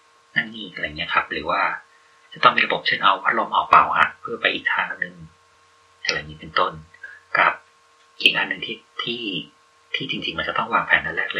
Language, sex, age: Thai, male, 30-49